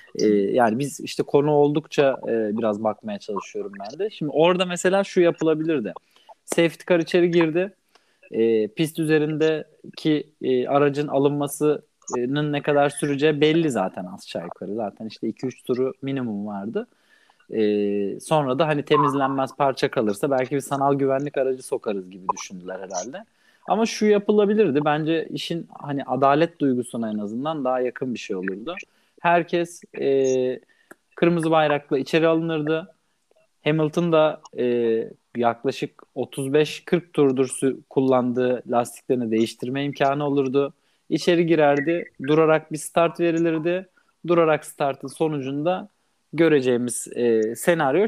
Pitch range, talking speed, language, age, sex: 130-165 Hz, 125 wpm, Turkish, 30-49, male